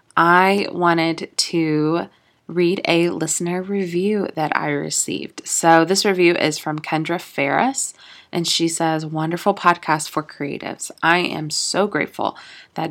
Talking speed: 135 wpm